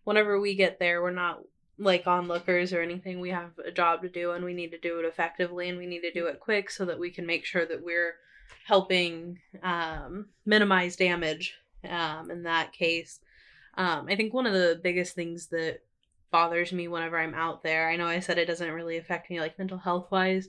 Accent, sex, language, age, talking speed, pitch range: American, female, English, 20-39, 215 wpm, 170-190 Hz